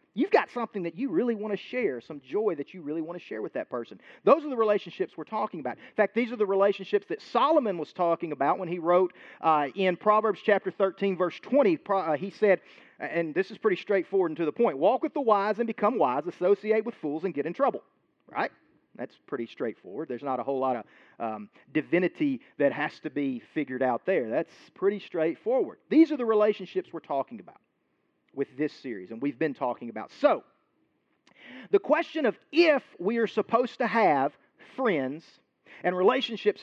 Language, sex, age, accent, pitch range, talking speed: English, male, 40-59, American, 160-235 Hz, 205 wpm